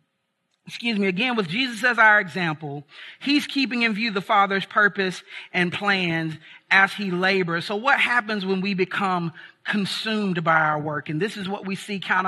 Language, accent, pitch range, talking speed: English, American, 185-230 Hz, 180 wpm